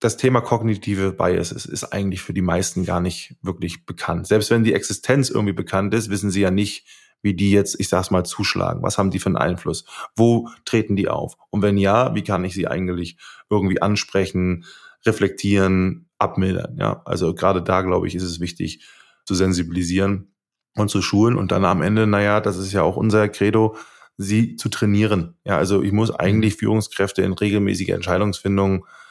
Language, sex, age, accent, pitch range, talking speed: German, male, 20-39, German, 95-105 Hz, 190 wpm